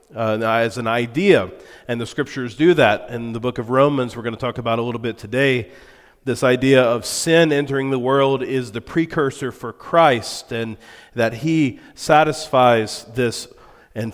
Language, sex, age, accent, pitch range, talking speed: English, male, 40-59, American, 110-135 Hz, 175 wpm